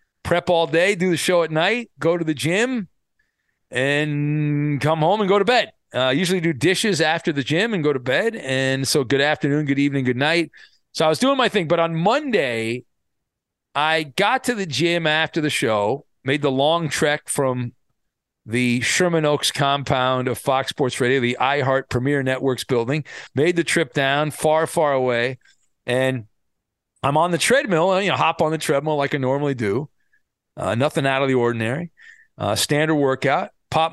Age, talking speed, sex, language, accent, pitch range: 40-59, 185 wpm, male, English, American, 130-165 Hz